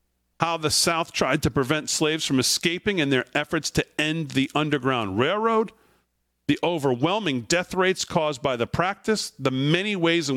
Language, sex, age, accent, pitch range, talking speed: English, male, 40-59, American, 125-170 Hz, 170 wpm